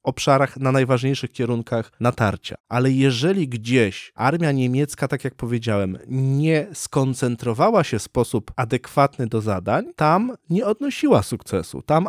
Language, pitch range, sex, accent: Polish, 120-150 Hz, male, native